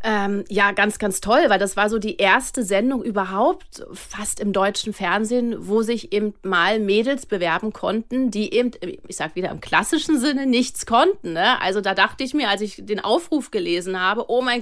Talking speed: 195 wpm